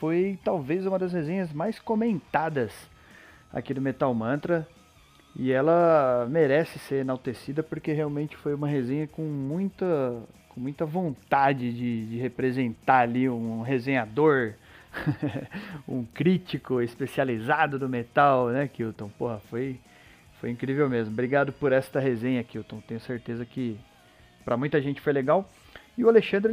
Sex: male